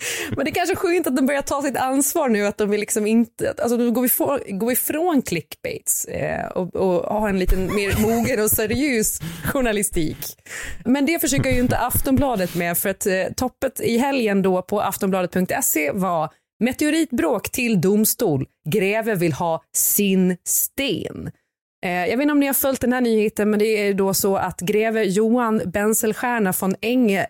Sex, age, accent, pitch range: female, 30-49, native, 180-240 Hz